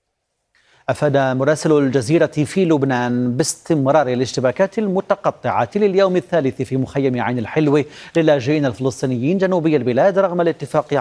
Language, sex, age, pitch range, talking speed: Arabic, male, 40-59, 130-165 Hz, 110 wpm